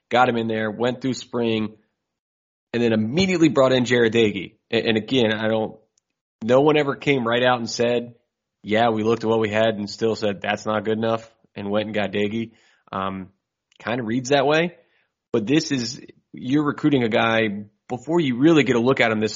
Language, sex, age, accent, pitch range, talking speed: English, male, 20-39, American, 105-120 Hz, 210 wpm